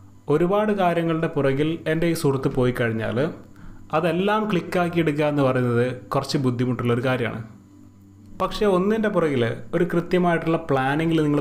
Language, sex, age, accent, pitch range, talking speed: Malayalam, male, 30-49, native, 115-160 Hz, 115 wpm